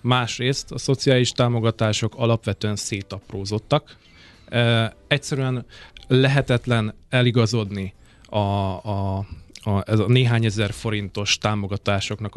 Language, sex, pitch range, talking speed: Hungarian, male, 105-125 Hz, 85 wpm